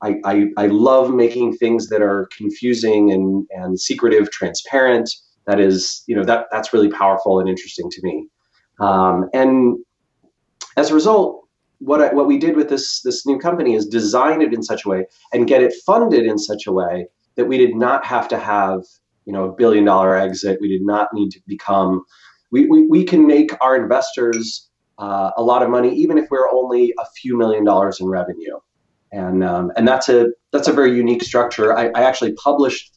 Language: English